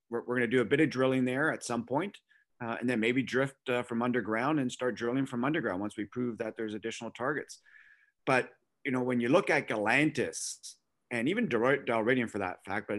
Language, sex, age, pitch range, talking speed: English, male, 30-49, 110-130 Hz, 215 wpm